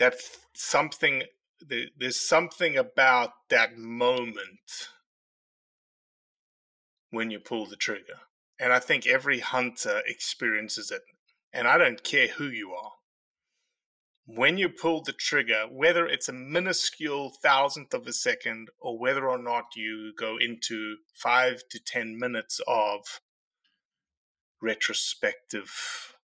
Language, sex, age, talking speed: English, male, 30-49, 120 wpm